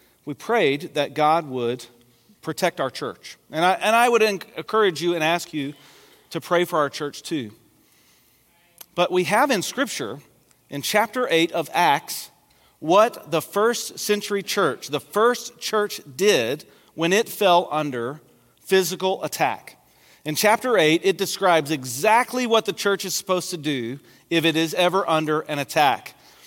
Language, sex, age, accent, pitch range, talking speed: English, male, 40-59, American, 155-205 Hz, 155 wpm